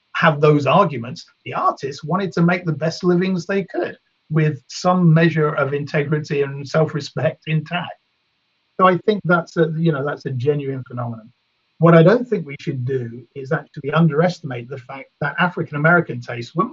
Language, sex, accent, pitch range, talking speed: English, male, British, 140-180 Hz, 170 wpm